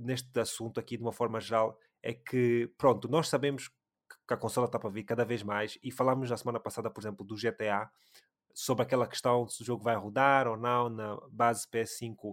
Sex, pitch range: male, 115-135 Hz